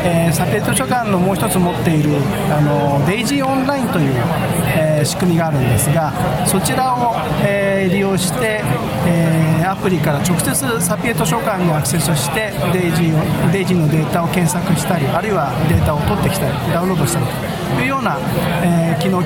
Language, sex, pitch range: Japanese, male, 155-195 Hz